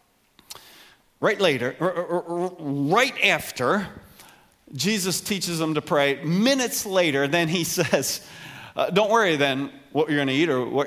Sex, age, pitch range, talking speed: male, 40-59, 145-230 Hz, 140 wpm